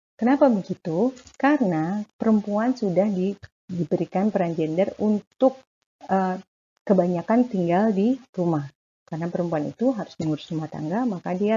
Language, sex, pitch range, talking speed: Indonesian, female, 170-215 Hz, 125 wpm